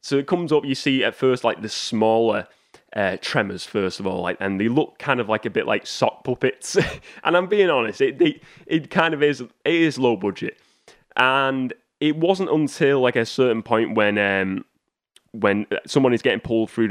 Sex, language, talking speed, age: male, English, 205 wpm, 20-39